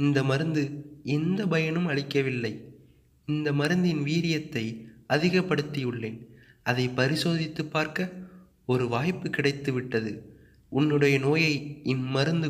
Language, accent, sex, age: Tamil, native, male, 30-49